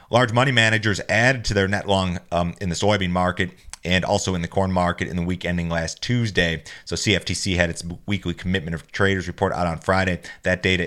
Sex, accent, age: male, American, 30-49